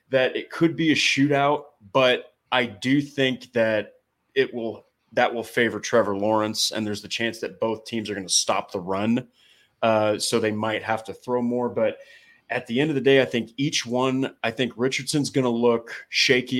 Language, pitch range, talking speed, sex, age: English, 105-125 Hz, 205 wpm, male, 30-49